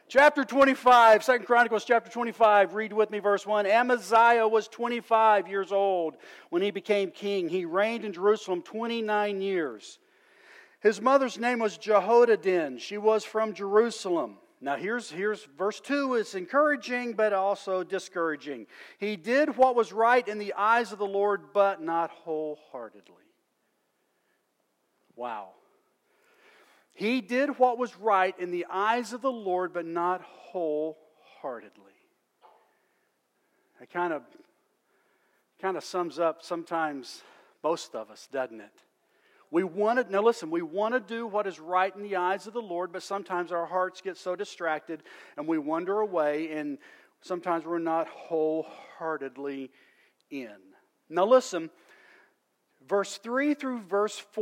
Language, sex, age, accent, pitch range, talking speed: English, male, 40-59, American, 180-240 Hz, 140 wpm